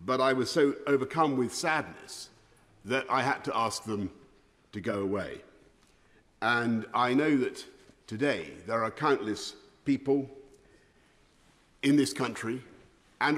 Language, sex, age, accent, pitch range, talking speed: English, male, 50-69, British, 120-150 Hz, 130 wpm